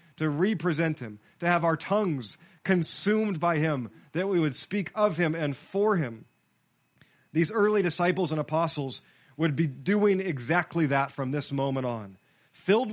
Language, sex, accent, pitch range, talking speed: English, male, American, 145-195 Hz, 160 wpm